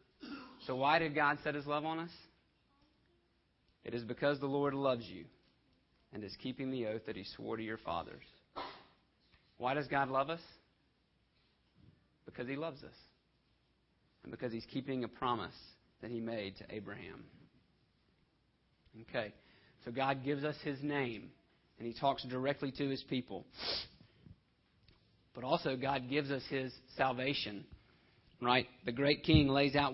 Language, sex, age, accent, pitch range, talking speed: English, male, 40-59, American, 125-145 Hz, 150 wpm